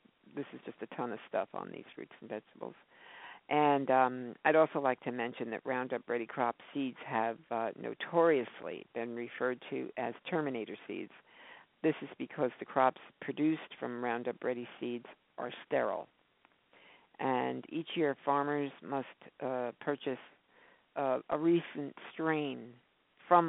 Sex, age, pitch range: female, 50-69, 135-175 Hz